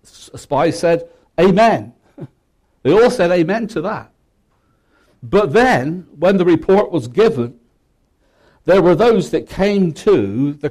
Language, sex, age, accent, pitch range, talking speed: English, male, 60-79, British, 150-200 Hz, 135 wpm